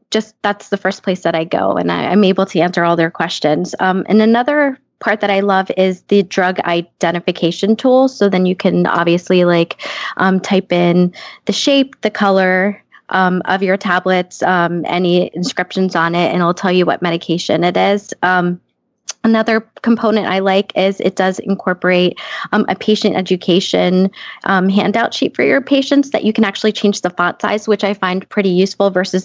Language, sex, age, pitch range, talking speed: English, female, 20-39, 175-215 Hz, 185 wpm